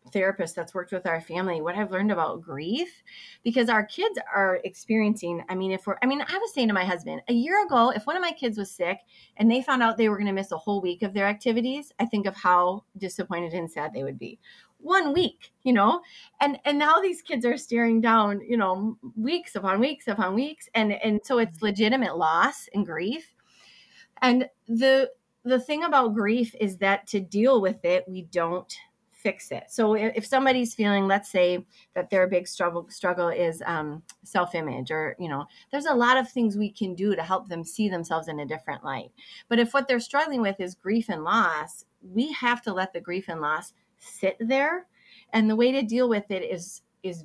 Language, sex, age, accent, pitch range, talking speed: English, female, 30-49, American, 180-245 Hz, 215 wpm